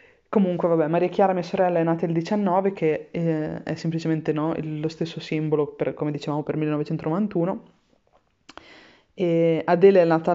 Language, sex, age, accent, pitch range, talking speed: Italian, female, 20-39, native, 160-190 Hz, 160 wpm